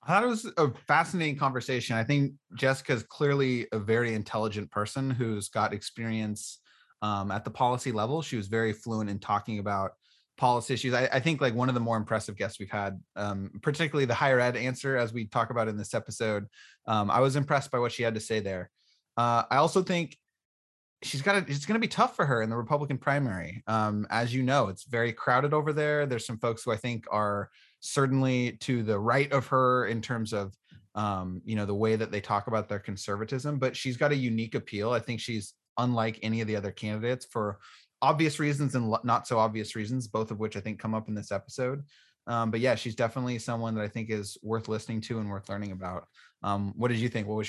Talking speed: 225 wpm